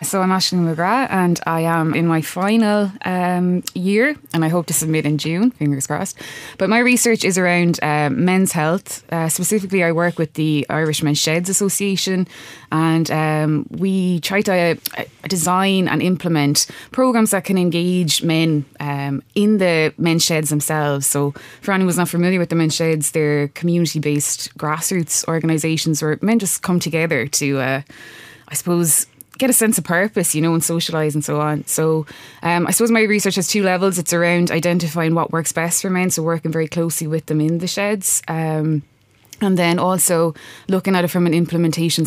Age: 20-39